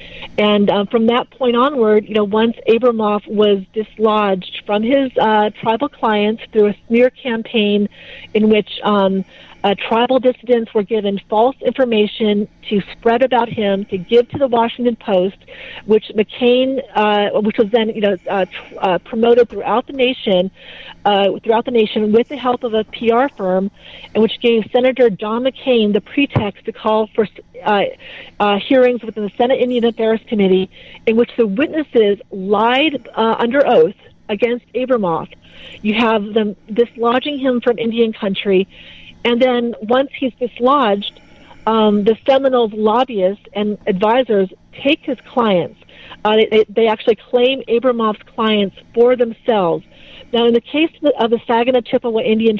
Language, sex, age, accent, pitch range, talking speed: English, female, 40-59, American, 210-245 Hz, 155 wpm